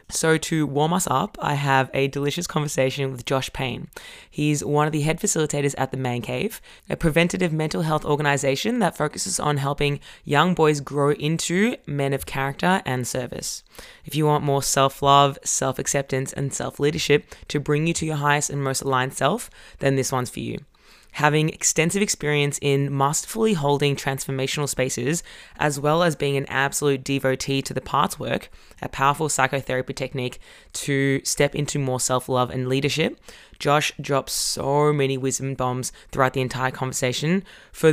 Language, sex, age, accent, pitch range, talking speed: English, female, 20-39, Australian, 135-155 Hz, 165 wpm